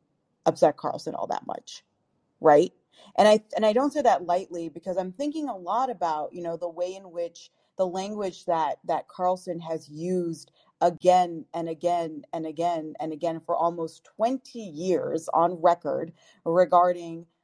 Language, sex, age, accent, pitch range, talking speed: English, female, 30-49, American, 160-185 Hz, 160 wpm